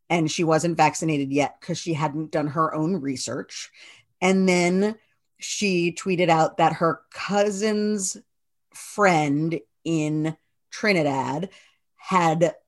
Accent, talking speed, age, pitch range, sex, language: American, 115 wpm, 40-59, 155-200 Hz, female, English